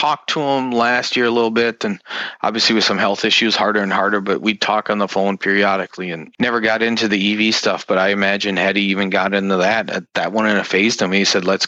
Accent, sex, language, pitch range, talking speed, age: American, male, English, 95-115 Hz, 260 wpm, 30-49